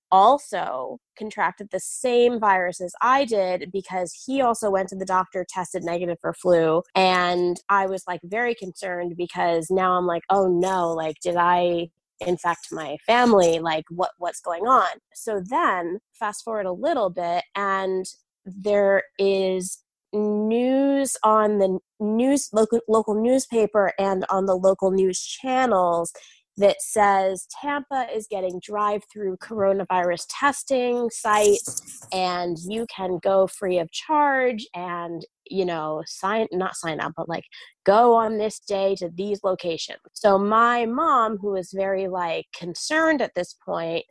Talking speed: 145 wpm